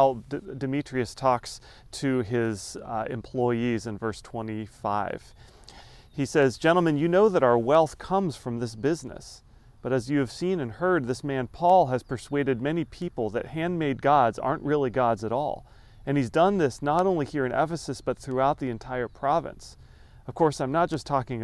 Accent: American